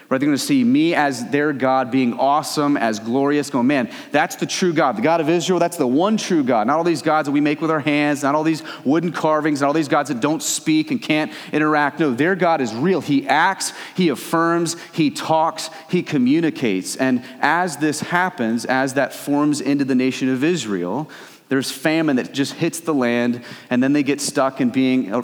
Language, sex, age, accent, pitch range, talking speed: English, male, 30-49, American, 135-170 Hz, 215 wpm